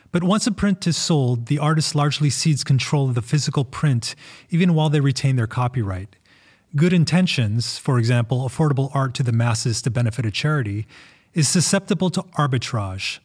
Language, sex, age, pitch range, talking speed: English, male, 30-49, 120-150 Hz, 170 wpm